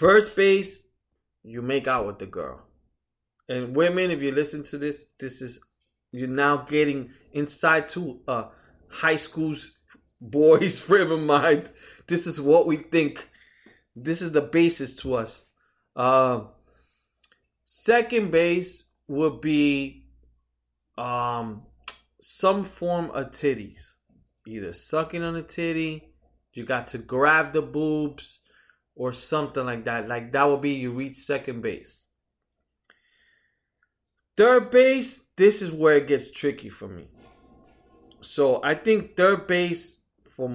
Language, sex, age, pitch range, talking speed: English, male, 30-49, 125-165 Hz, 135 wpm